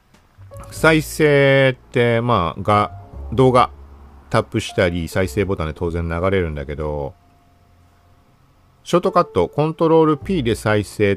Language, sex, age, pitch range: Japanese, male, 40-59, 85-120 Hz